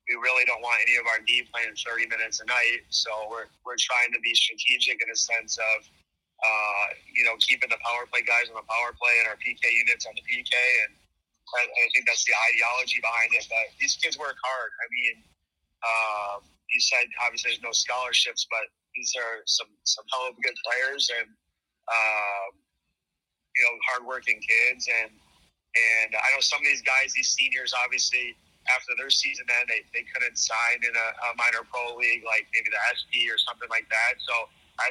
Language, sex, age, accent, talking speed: English, male, 30-49, American, 200 wpm